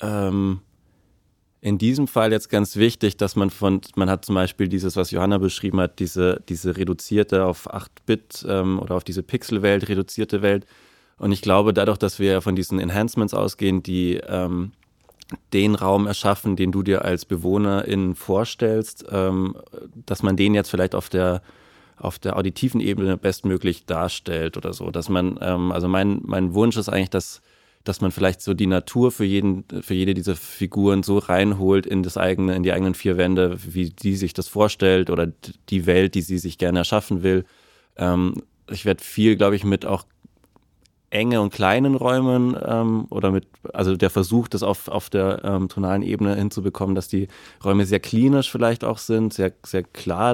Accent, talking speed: German, 175 wpm